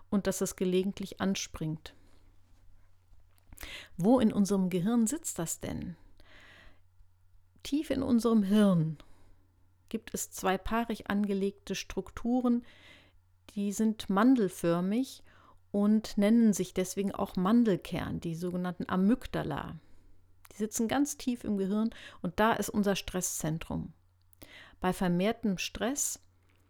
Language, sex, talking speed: German, female, 110 wpm